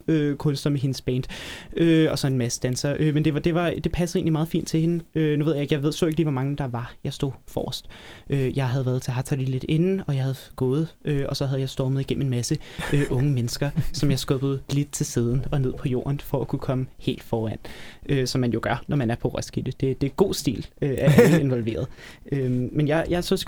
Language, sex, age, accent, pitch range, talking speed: Danish, male, 20-39, native, 130-155 Hz, 270 wpm